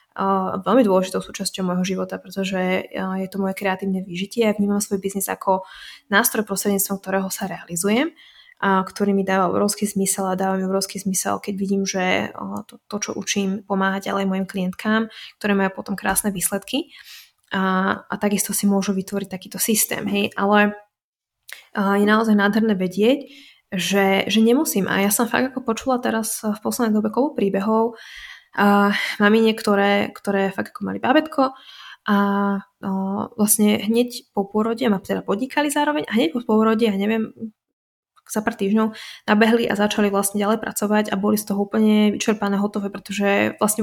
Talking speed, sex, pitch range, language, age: 165 wpm, female, 195-220 Hz, Slovak, 20-39